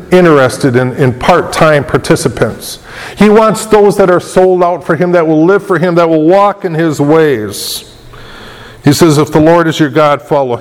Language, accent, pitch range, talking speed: English, American, 145-175 Hz, 190 wpm